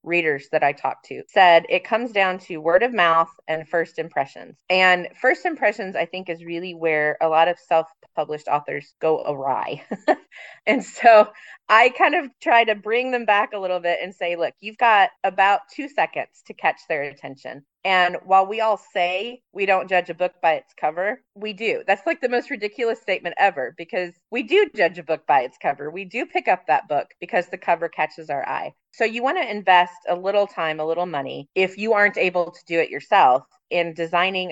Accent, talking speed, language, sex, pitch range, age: American, 210 wpm, English, female, 155-195 Hz, 30-49